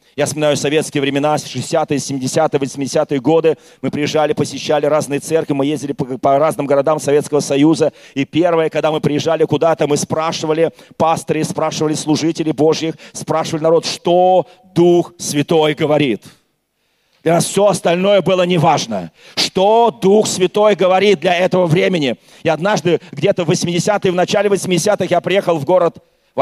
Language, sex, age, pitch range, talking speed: Russian, male, 40-59, 145-180 Hz, 150 wpm